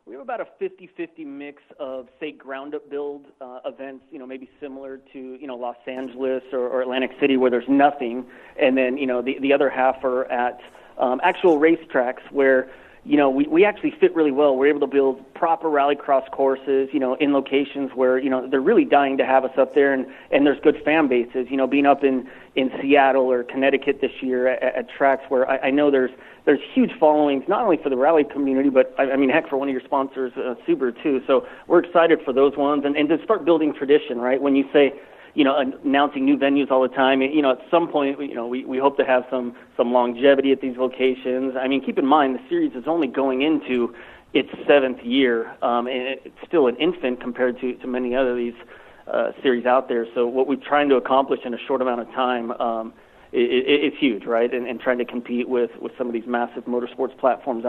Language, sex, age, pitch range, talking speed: English, male, 30-49, 125-145 Hz, 235 wpm